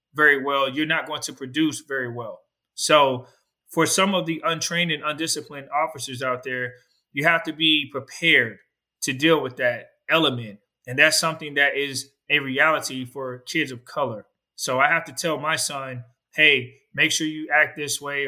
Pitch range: 135-160 Hz